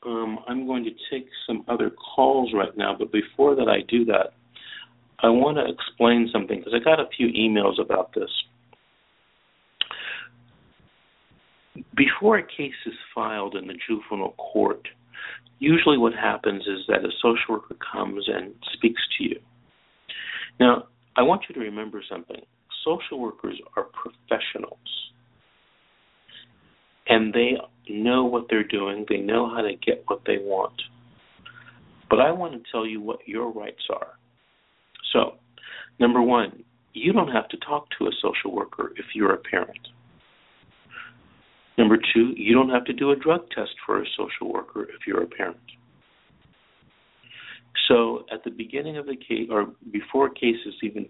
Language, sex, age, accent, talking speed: English, male, 50-69, American, 155 wpm